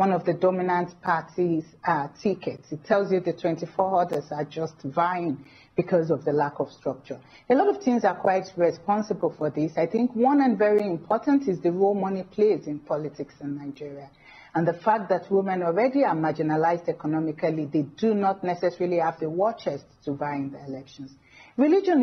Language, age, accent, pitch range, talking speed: English, 40-59, Nigerian, 155-205 Hz, 185 wpm